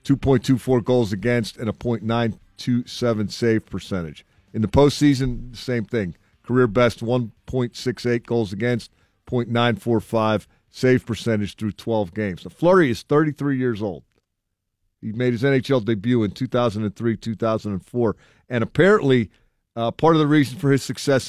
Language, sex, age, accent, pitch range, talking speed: English, male, 50-69, American, 105-130 Hz, 125 wpm